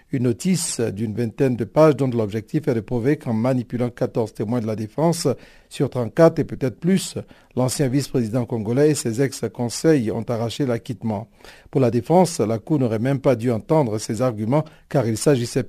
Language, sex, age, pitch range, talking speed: French, male, 60-79, 120-150 Hz, 180 wpm